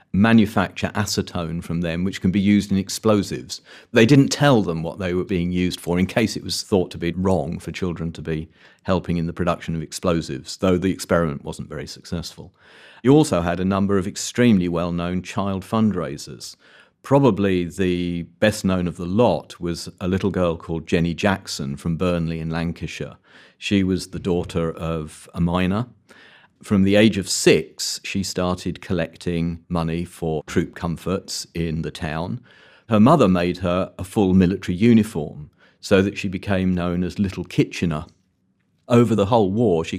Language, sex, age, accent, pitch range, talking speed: English, male, 40-59, British, 85-100 Hz, 175 wpm